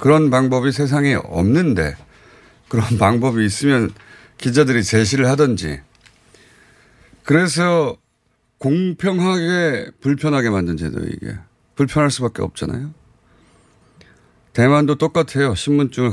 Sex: male